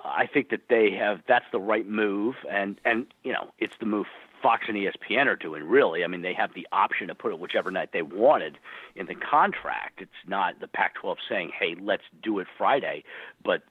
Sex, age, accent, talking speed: male, 50-69, American, 215 wpm